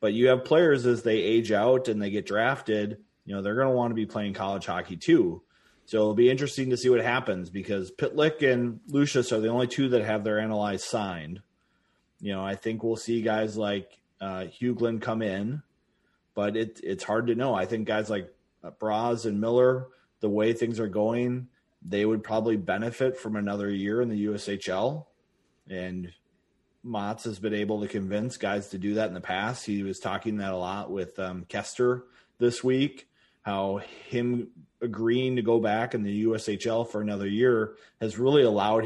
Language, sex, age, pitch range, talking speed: English, male, 30-49, 100-120 Hz, 200 wpm